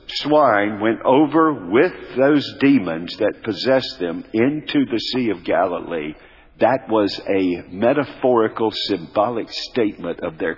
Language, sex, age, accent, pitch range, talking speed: English, male, 50-69, American, 100-140 Hz, 125 wpm